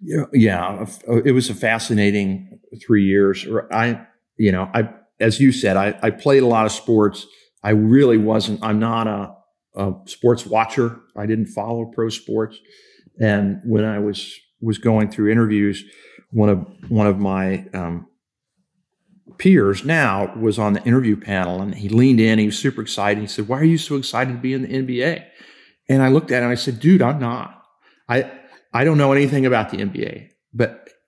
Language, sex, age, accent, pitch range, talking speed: English, male, 50-69, American, 100-120 Hz, 185 wpm